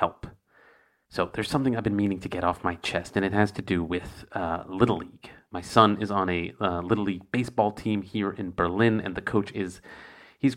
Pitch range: 95-120 Hz